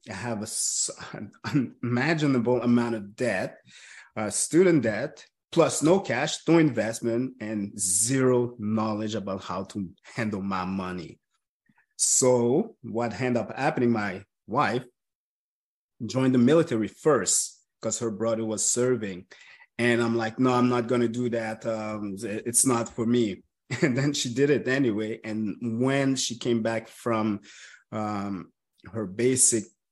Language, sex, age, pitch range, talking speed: English, male, 30-49, 105-125 Hz, 140 wpm